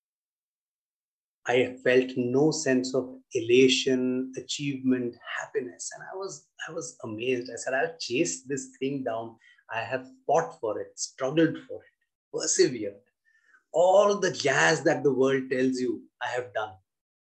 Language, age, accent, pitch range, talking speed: English, 30-49, Indian, 125-170 Hz, 140 wpm